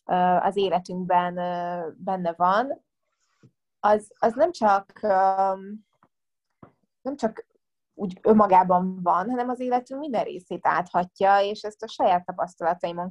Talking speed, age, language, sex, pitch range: 110 wpm, 20-39, Hungarian, female, 180-210 Hz